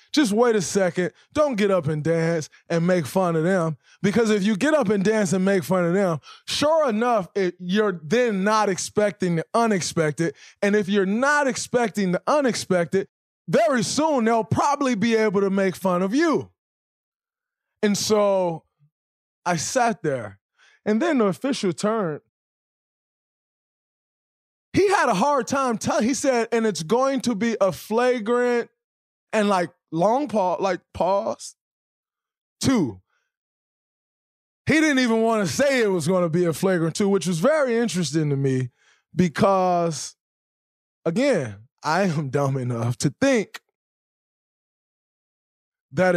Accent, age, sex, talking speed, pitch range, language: American, 20-39, male, 145 wpm, 170-235 Hz, English